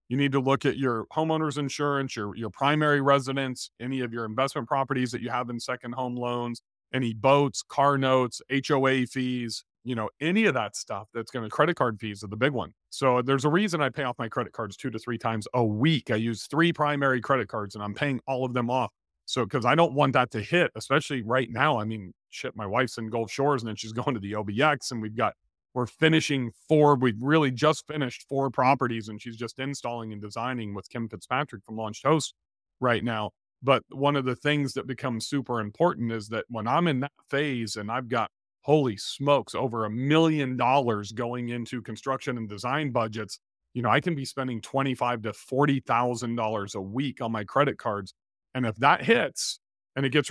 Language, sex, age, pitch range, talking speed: English, male, 40-59, 115-140 Hz, 215 wpm